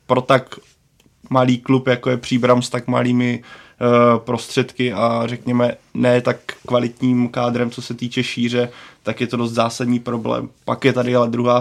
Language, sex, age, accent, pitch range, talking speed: Czech, male, 20-39, native, 120-125 Hz, 170 wpm